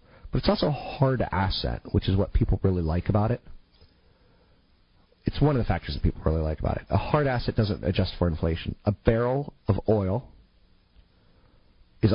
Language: English